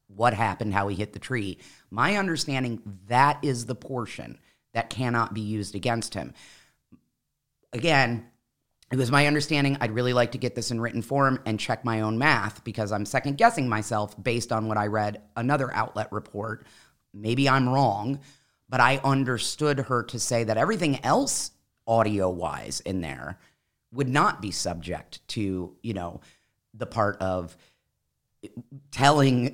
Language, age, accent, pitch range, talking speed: English, 30-49, American, 100-130 Hz, 155 wpm